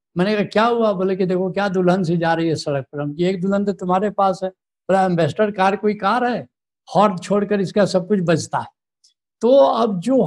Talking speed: 215 wpm